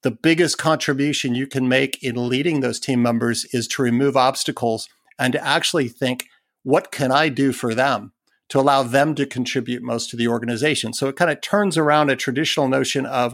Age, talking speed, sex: 50-69, 200 wpm, male